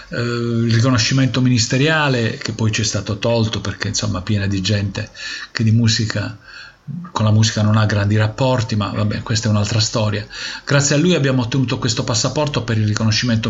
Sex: male